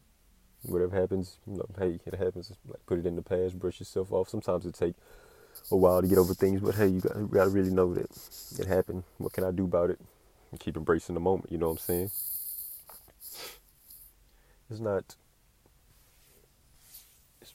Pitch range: 85-95 Hz